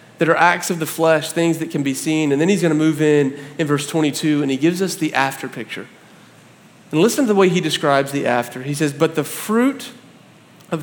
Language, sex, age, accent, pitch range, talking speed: English, male, 40-59, American, 140-180 Hz, 235 wpm